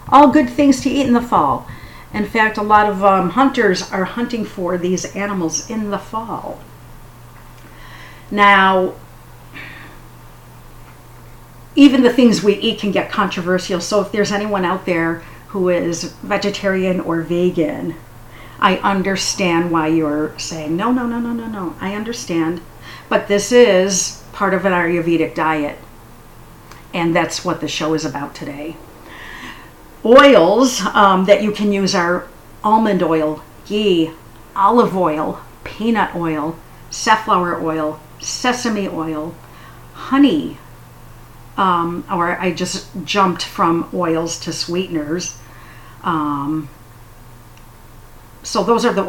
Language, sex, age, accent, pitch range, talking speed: English, female, 50-69, American, 160-205 Hz, 130 wpm